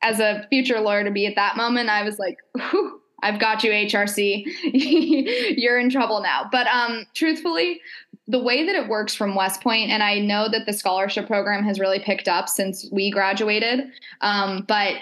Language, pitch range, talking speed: English, 195-235 Hz, 190 wpm